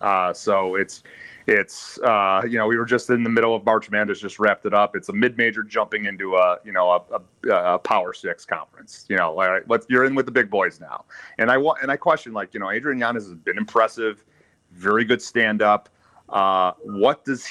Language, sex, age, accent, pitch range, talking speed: English, male, 30-49, American, 100-120 Hz, 220 wpm